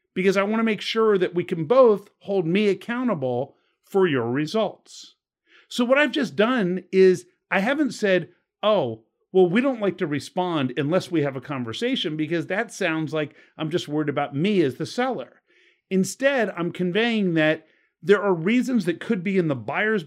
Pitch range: 155-210 Hz